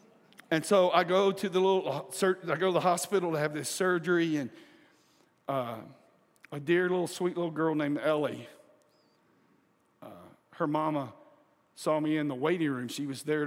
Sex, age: male, 50-69